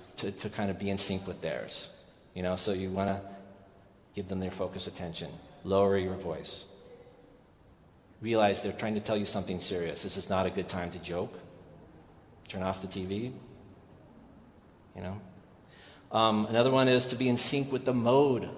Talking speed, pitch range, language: 180 wpm, 95-120 Hz, English